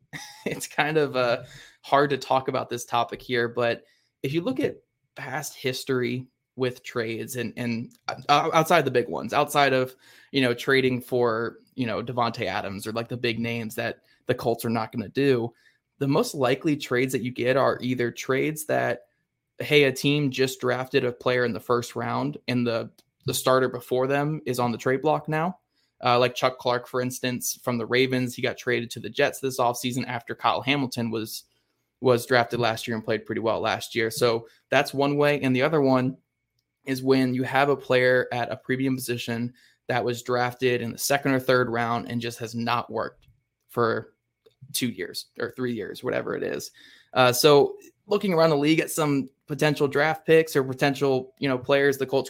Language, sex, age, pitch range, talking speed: English, male, 20-39, 120-135 Hz, 200 wpm